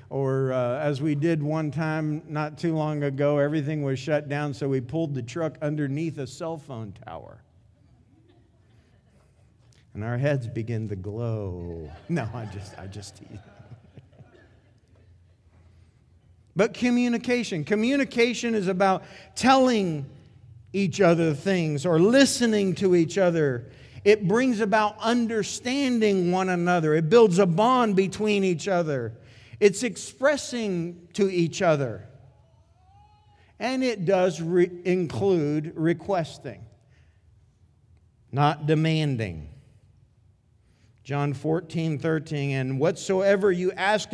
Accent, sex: American, male